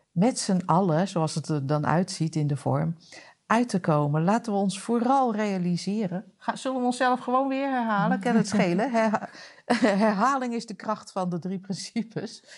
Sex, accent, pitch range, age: female, Dutch, 160-205 Hz, 50-69